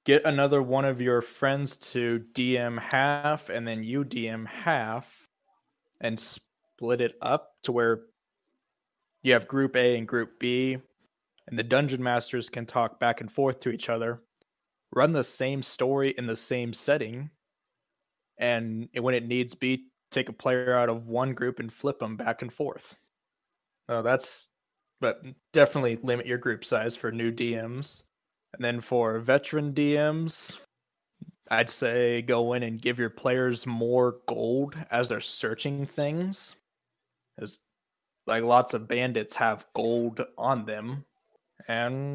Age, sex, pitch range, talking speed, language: 20-39, male, 120-130 Hz, 150 wpm, English